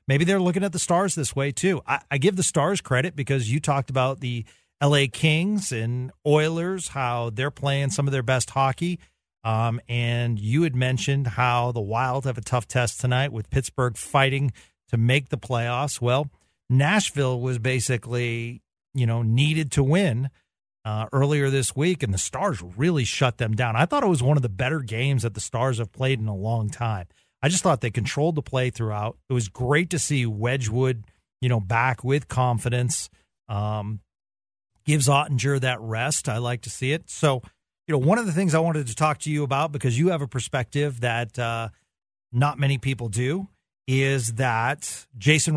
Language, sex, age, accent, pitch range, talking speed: English, male, 40-59, American, 120-145 Hz, 195 wpm